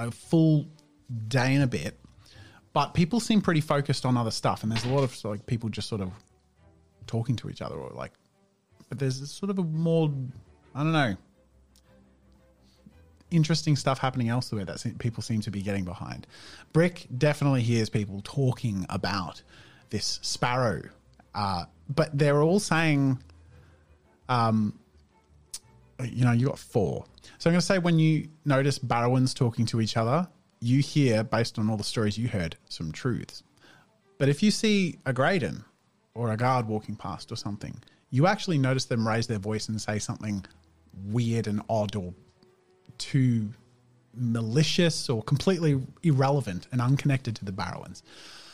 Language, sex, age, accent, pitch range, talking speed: English, male, 30-49, Australian, 105-145 Hz, 160 wpm